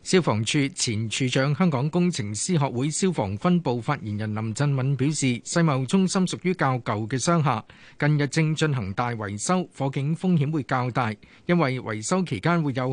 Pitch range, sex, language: 125-165 Hz, male, Chinese